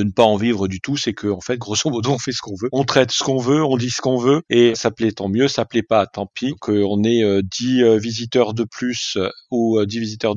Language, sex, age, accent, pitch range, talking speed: French, male, 40-59, French, 110-140 Hz, 280 wpm